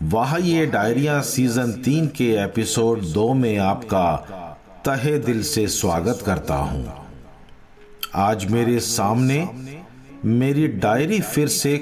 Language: Hindi